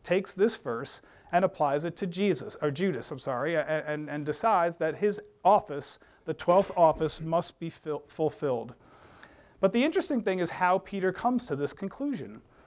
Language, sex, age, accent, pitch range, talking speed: English, male, 40-59, American, 150-190 Hz, 165 wpm